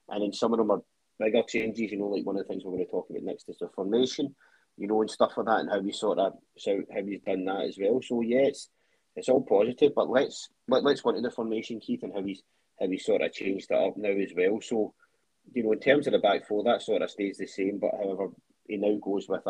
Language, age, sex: English, 30-49, male